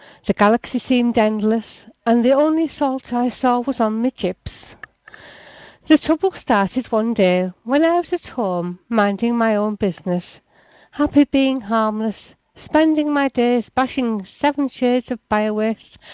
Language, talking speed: English, 145 wpm